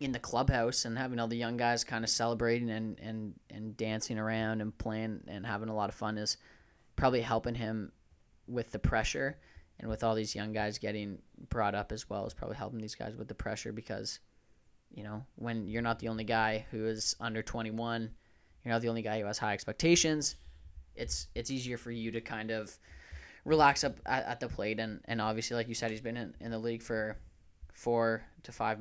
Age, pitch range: 10-29, 100-115 Hz